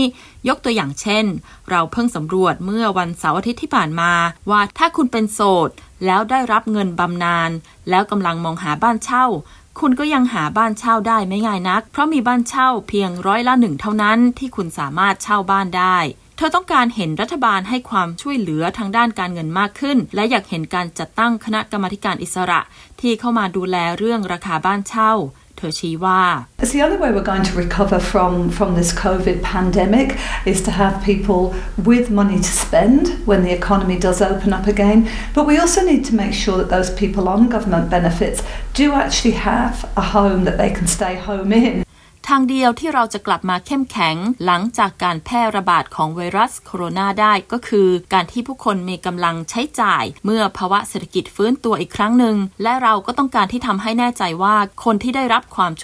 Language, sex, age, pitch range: Thai, female, 20-39, 185-230 Hz